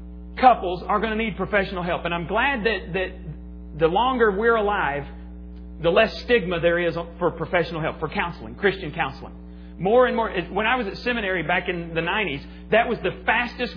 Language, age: English, 40-59